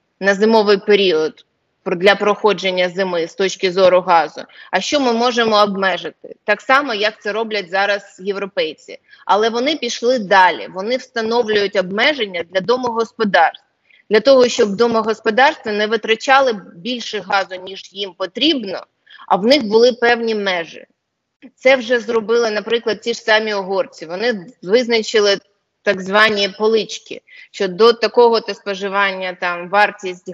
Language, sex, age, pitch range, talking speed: Ukrainian, female, 20-39, 195-240 Hz, 135 wpm